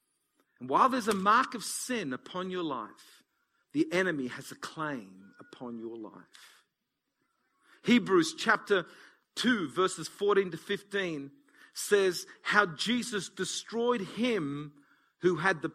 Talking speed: 125 wpm